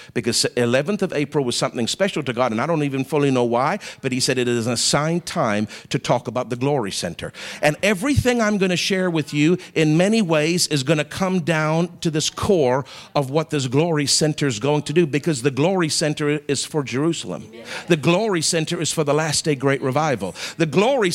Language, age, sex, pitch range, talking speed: English, 50-69, male, 165-260 Hz, 220 wpm